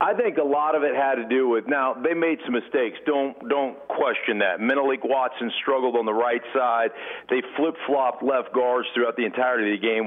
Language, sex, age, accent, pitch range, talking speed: English, male, 40-59, American, 110-135 Hz, 215 wpm